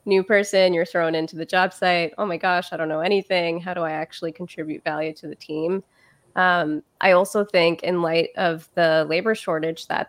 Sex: female